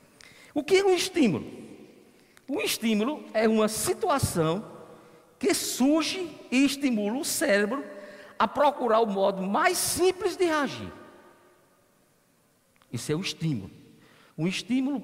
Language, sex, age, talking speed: Portuguese, male, 50-69, 120 wpm